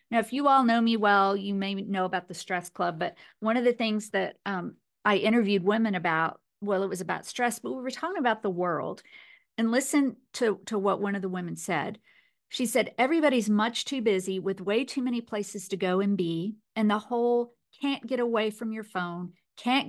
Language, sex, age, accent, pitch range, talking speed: English, female, 50-69, American, 190-235 Hz, 215 wpm